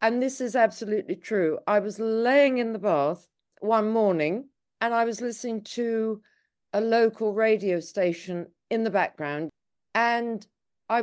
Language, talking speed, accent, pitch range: English, 145 wpm, British, 180-240 Hz